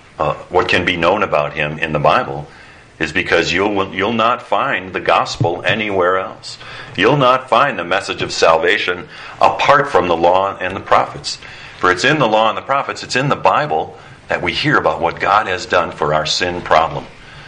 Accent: American